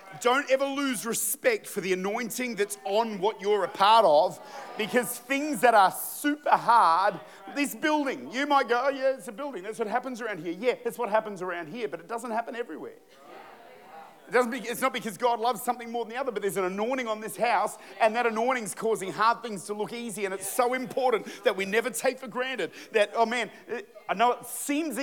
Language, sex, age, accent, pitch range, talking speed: English, male, 40-59, Australian, 220-265 Hz, 215 wpm